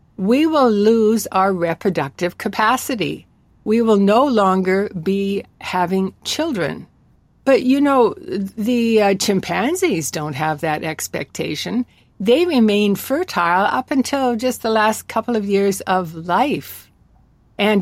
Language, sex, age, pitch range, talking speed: English, female, 60-79, 180-235 Hz, 125 wpm